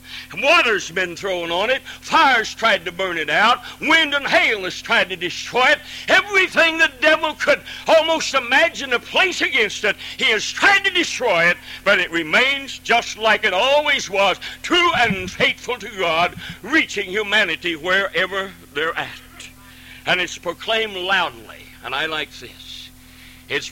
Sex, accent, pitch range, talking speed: male, American, 160-215 Hz, 155 wpm